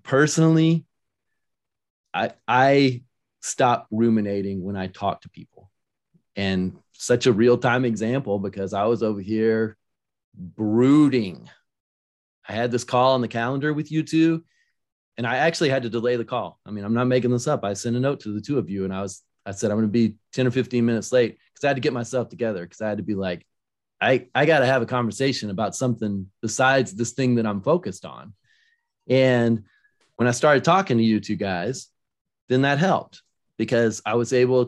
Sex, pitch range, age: male, 100-130 Hz, 30-49